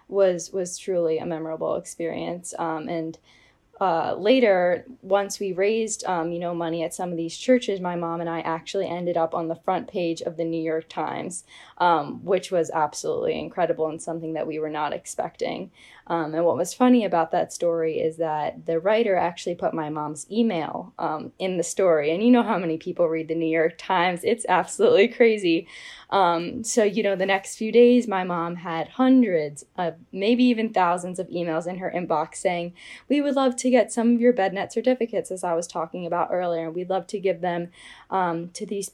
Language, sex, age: English, female, 10-29